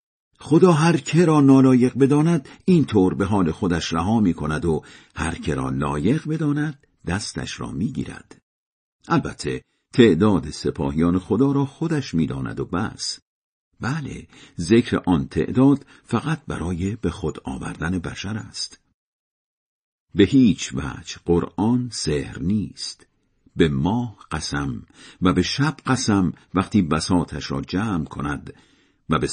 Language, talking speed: Persian, 130 wpm